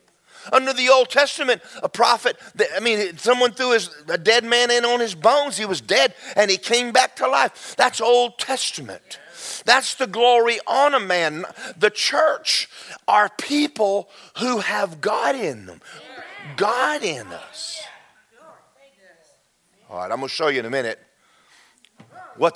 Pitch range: 195-260 Hz